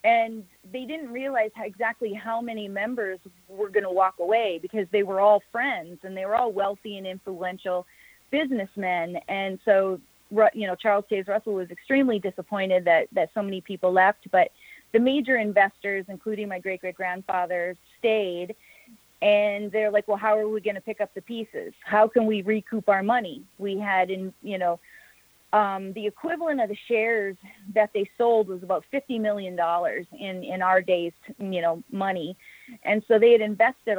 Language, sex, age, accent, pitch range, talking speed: English, female, 30-49, American, 190-225 Hz, 180 wpm